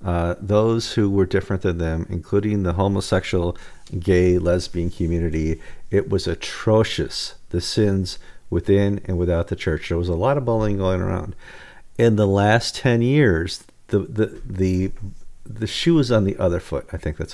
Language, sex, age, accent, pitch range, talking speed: English, male, 50-69, American, 95-130 Hz, 165 wpm